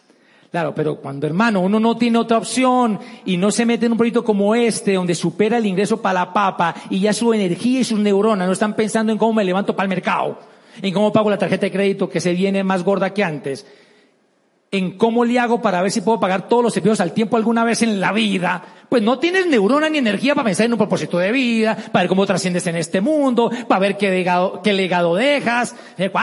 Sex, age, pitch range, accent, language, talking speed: male, 40-59, 195-250 Hz, Mexican, Spanish, 235 wpm